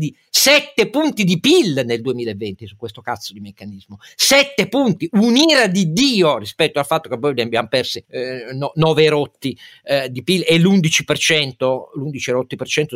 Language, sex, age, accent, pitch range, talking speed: Italian, male, 50-69, native, 125-200 Hz, 160 wpm